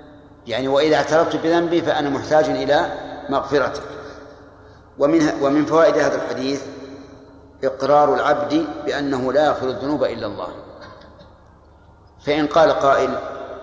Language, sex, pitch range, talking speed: Arabic, male, 105-150 Hz, 105 wpm